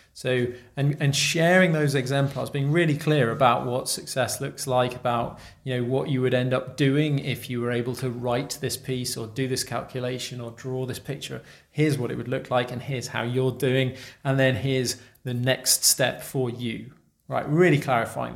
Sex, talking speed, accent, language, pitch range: male, 200 wpm, British, English, 120-140 Hz